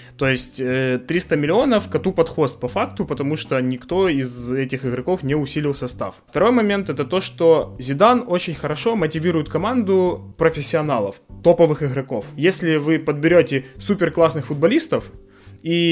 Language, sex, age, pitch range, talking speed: Ukrainian, male, 20-39, 130-165 Hz, 140 wpm